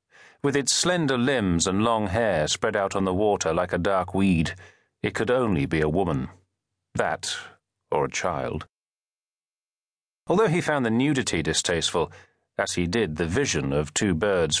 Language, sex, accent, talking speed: English, male, British, 165 wpm